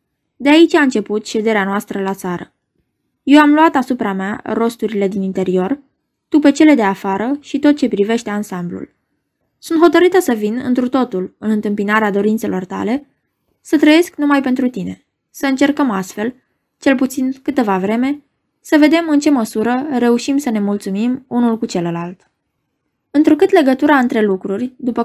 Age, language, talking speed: 20-39, Romanian, 155 wpm